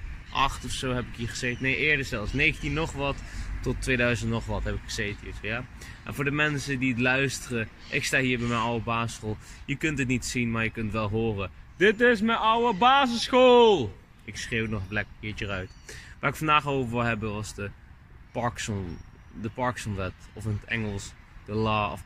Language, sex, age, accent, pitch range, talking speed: Dutch, male, 20-39, Dutch, 105-130 Hz, 210 wpm